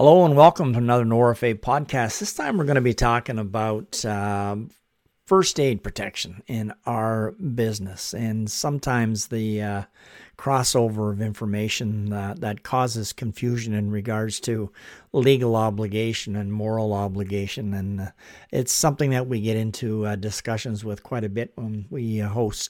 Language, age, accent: English, 50-69, American